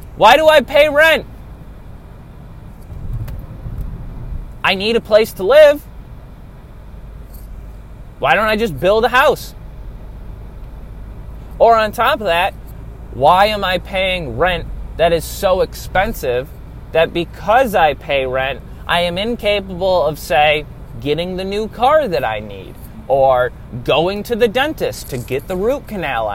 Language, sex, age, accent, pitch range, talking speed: English, male, 20-39, American, 150-225 Hz, 135 wpm